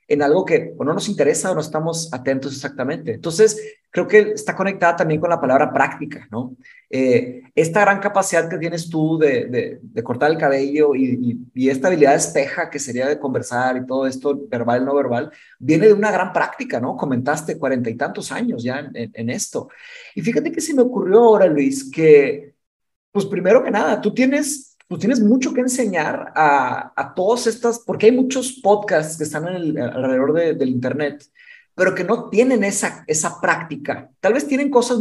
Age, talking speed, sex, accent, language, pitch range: 30-49, 195 wpm, male, Mexican, Spanish, 145-225 Hz